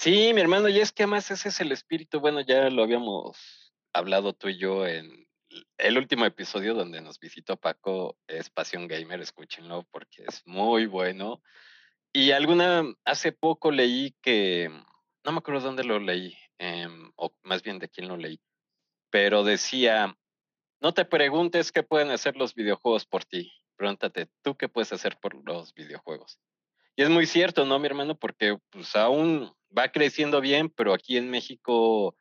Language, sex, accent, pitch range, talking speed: Spanish, male, Mexican, 95-145 Hz, 170 wpm